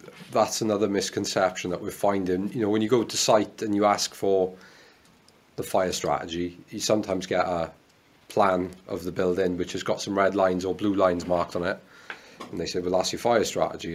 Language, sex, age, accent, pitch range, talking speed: English, male, 30-49, British, 90-105 Hz, 205 wpm